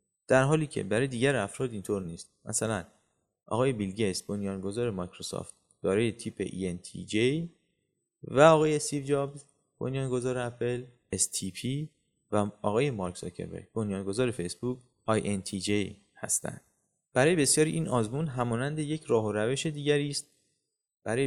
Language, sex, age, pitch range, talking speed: Persian, male, 30-49, 105-145 Hz, 125 wpm